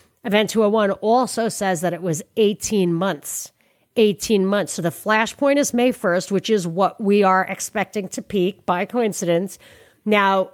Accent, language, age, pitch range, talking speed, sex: American, English, 40-59, 190-235 Hz, 160 wpm, female